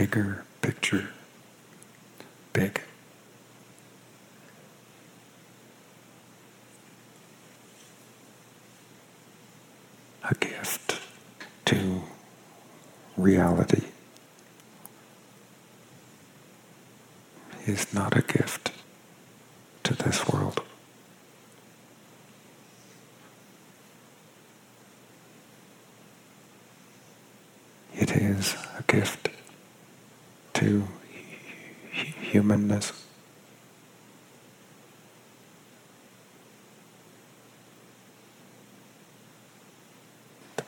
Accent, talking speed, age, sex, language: American, 30 wpm, 60-79, male, English